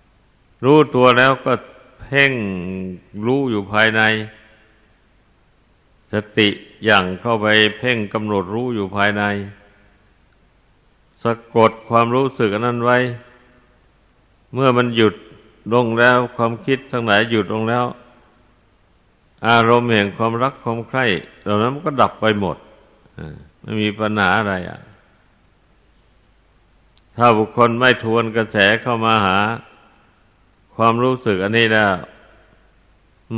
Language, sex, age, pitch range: Thai, male, 60-79, 100-120 Hz